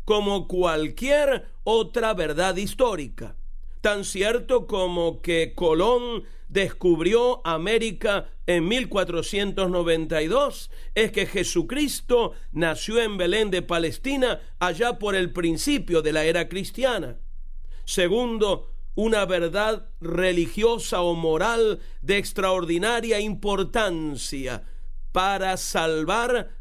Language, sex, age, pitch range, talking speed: Spanish, male, 50-69, 175-235 Hz, 90 wpm